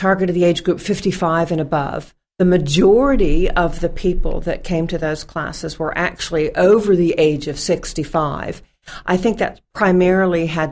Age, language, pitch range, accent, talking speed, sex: 50-69, English, 150-175 Hz, American, 175 wpm, female